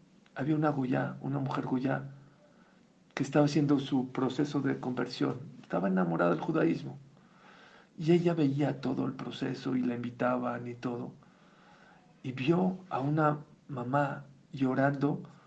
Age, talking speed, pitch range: 50-69, 130 wpm, 130-180 Hz